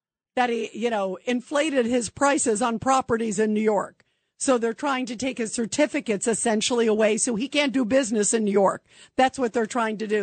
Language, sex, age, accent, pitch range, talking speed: English, female, 50-69, American, 235-300 Hz, 205 wpm